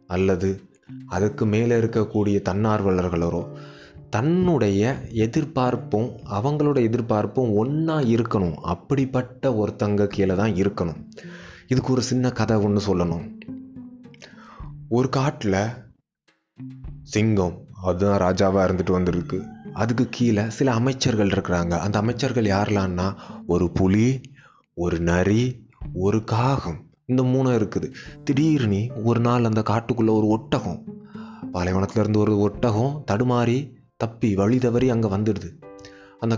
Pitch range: 100-125 Hz